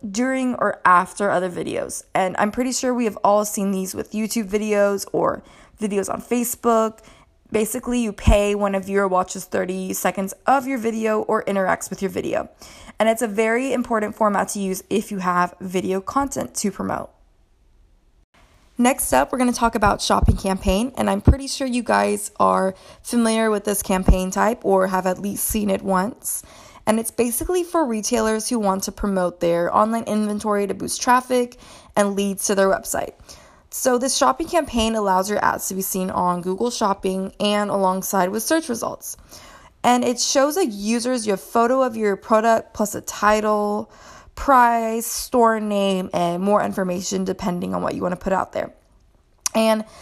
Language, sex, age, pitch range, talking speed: English, female, 20-39, 190-235 Hz, 180 wpm